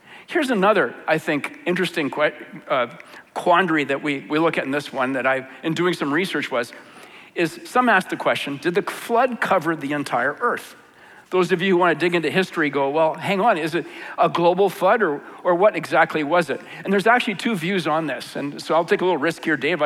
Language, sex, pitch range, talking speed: English, male, 160-200 Hz, 225 wpm